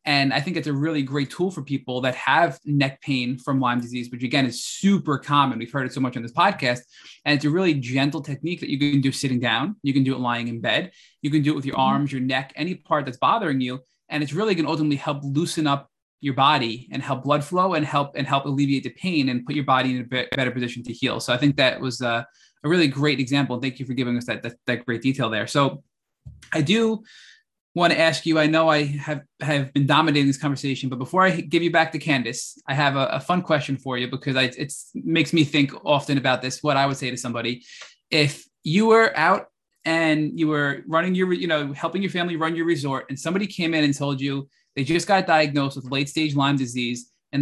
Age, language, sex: 20-39, English, male